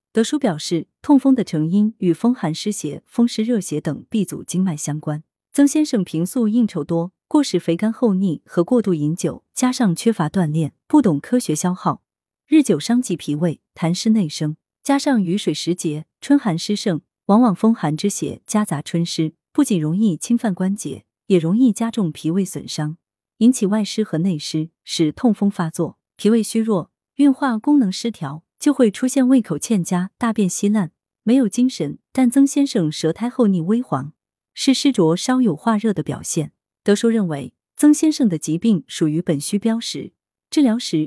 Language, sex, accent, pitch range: Chinese, female, native, 160-235 Hz